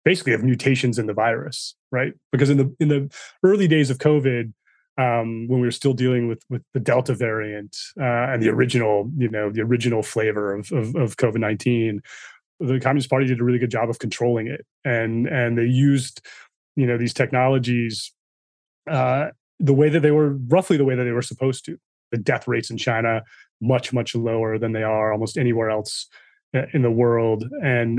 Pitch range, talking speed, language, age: 115-140 Hz, 195 wpm, English, 30-49